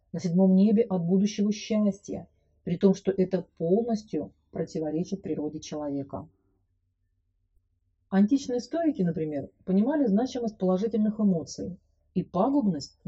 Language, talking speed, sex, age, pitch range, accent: Russian, 105 wpm, female, 40-59, 155-220 Hz, native